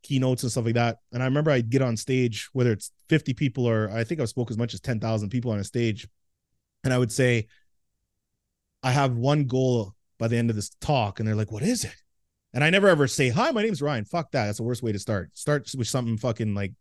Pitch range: 110-145 Hz